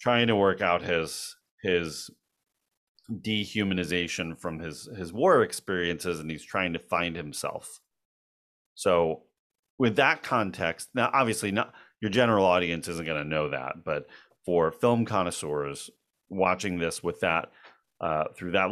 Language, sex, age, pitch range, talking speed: English, male, 30-49, 85-105 Hz, 140 wpm